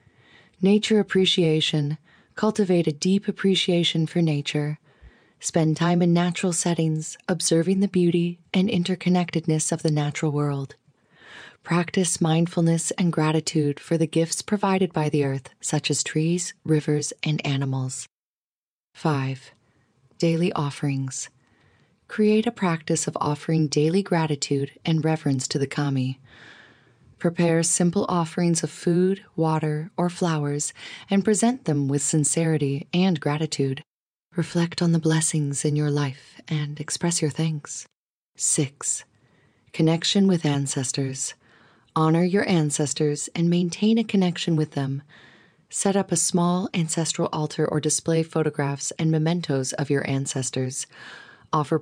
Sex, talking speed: female, 125 wpm